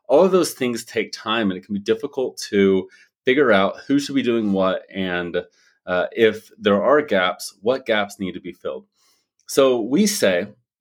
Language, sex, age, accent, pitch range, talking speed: English, male, 30-49, American, 100-140 Hz, 190 wpm